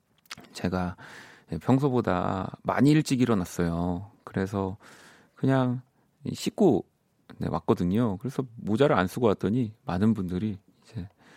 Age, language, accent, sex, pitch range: 40-59, Korean, native, male, 95-140 Hz